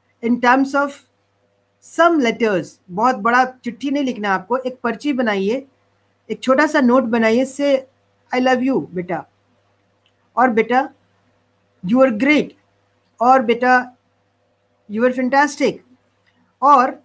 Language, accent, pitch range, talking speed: Hindi, native, 185-255 Hz, 125 wpm